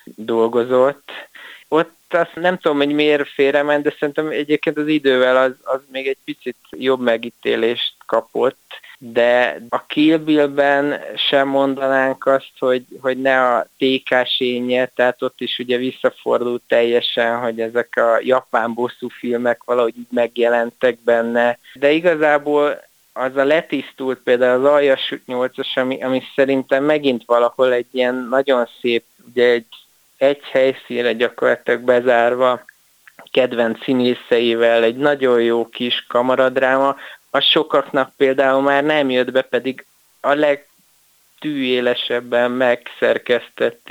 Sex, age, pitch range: male, 20-39, 120-145 Hz